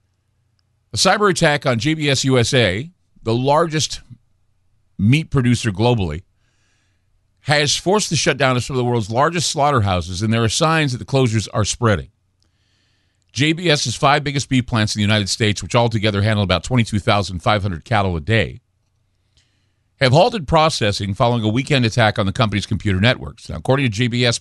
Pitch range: 100-130 Hz